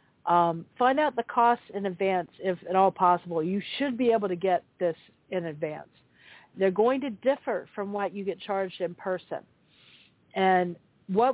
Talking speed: 175 wpm